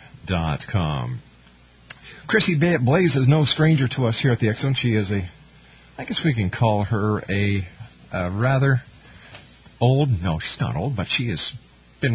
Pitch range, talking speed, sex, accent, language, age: 90-125 Hz, 170 wpm, male, American, English, 50-69